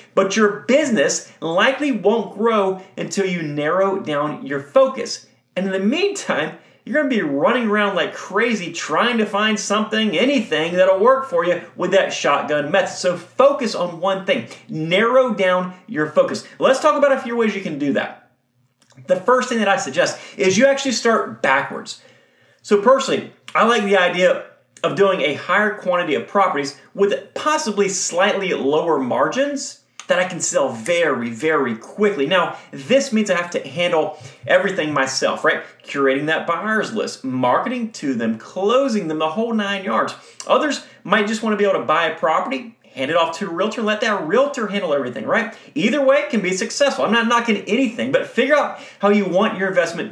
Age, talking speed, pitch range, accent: 30-49, 185 wpm, 175-240 Hz, American